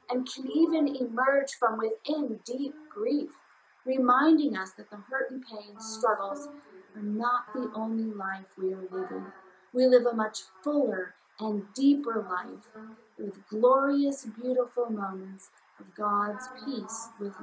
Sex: female